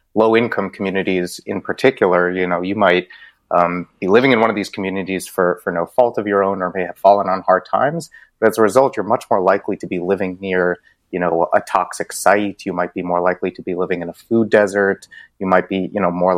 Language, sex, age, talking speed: English, male, 30-49, 240 wpm